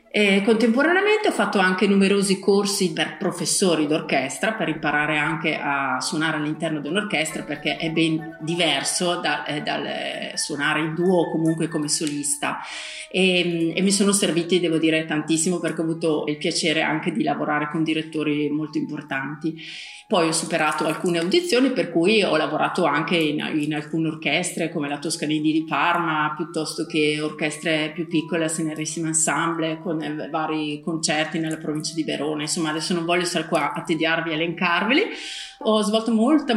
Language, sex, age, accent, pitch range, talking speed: Italian, female, 30-49, native, 160-200 Hz, 160 wpm